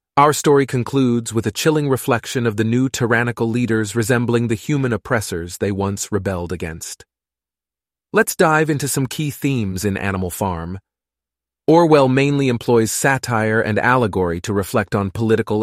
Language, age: English, 30-49